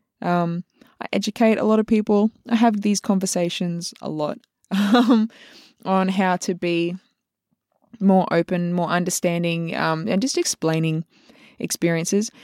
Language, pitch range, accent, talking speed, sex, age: English, 175-215 Hz, Australian, 130 wpm, female, 20-39